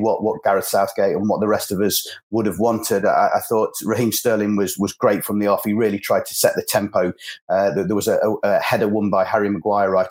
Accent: British